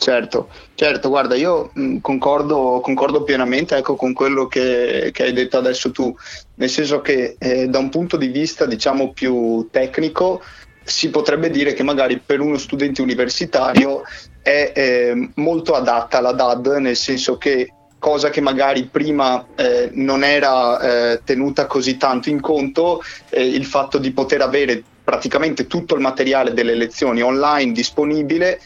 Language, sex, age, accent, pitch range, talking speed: Italian, male, 30-49, native, 120-140 Hz, 155 wpm